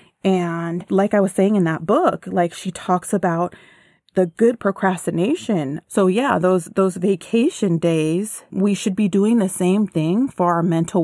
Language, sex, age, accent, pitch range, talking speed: English, female, 30-49, American, 165-190 Hz, 170 wpm